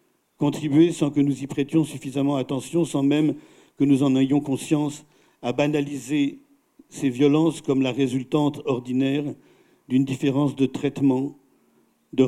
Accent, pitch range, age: French, 125-150 Hz, 50-69